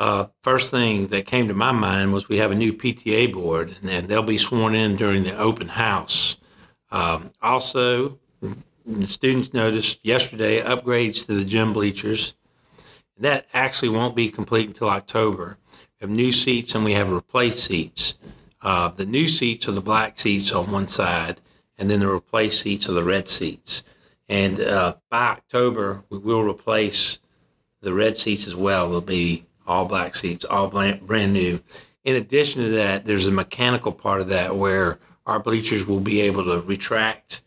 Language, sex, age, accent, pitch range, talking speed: English, male, 50-69, American, 100-120 Hz, 175 wpm